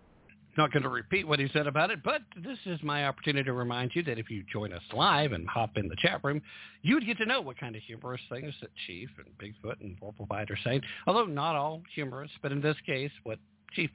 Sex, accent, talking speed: male, American, 245 wpm